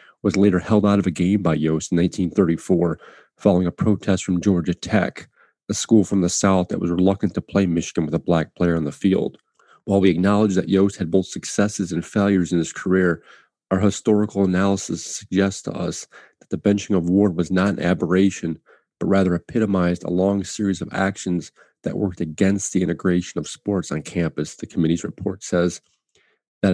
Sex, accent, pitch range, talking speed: male, American, 85-100 Hz, 190 wpm